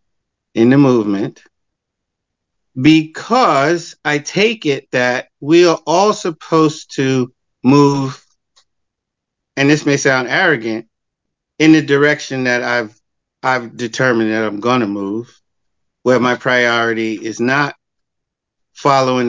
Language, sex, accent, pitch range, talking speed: English, male, American, 120-160 Hz, 115 wpm